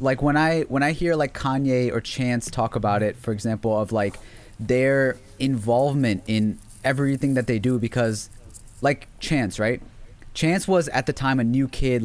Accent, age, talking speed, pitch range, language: American, 20-39, 180 wpm, 110-130 Hz, English